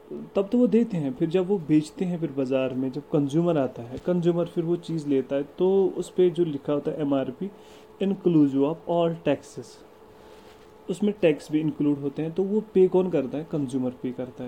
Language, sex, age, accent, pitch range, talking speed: English, male, 30-49, Indian, 145-185 Hz, 205 wpm